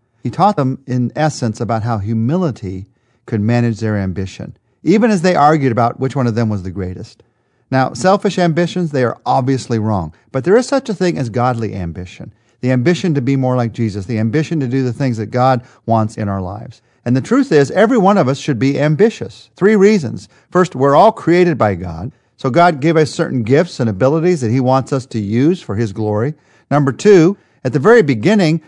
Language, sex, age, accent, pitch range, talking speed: English, male, 50-69, American, 120-160 Hz, 210 wpm